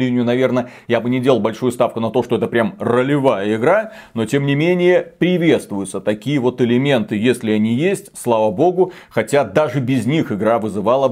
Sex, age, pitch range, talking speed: male, 30-49, 115-155 Hz, 185 wpm